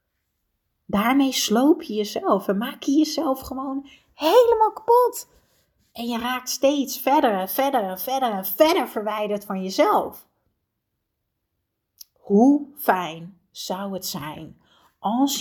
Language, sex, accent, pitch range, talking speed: Dutch, female, Dutch, 195-280 Hz, 120 wpm